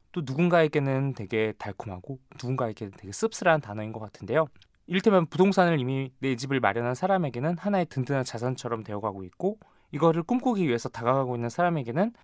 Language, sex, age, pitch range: Korean, male, 20-39, 115-165 Hz